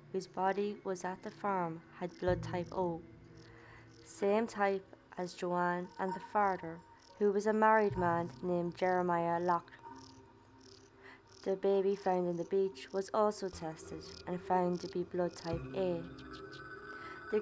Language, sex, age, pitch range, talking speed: English, female, 20-39, 165-195 Hz, 145 wpm